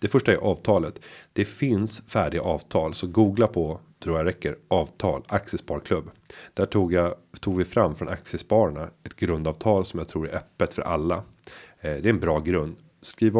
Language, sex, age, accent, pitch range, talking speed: Swedish, male, 30-49, native, 80-105 Hz, 170 wpm